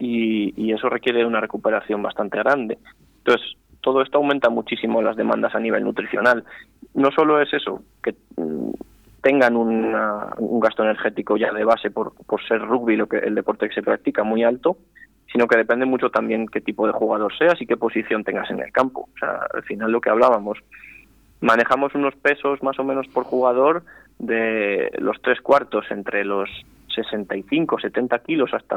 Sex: male